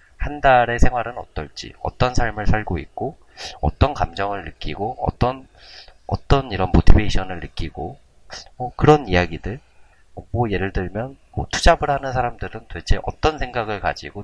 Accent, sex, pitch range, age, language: native, male, 85-110 Hz, 30-49, Korean